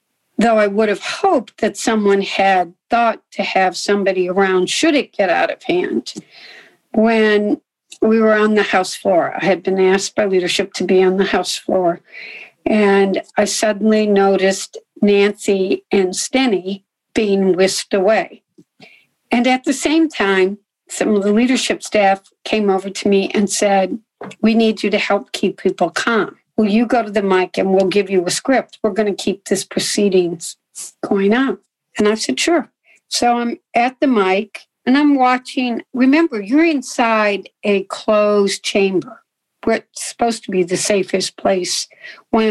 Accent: American